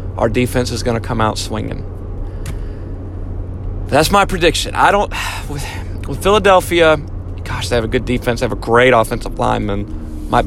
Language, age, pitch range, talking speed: English, 30-49, 115-165 Hz, 160 wpm